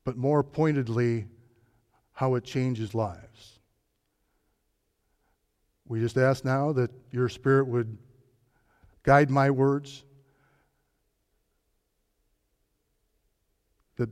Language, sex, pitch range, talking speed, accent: English, male, 115-140 Hz, 80 wpm, American